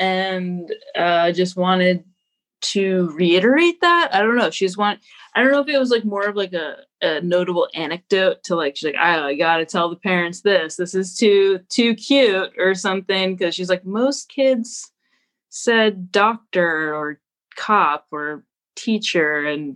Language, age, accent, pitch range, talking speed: English, 20-39, American, 160-195 Hz, 175 wpm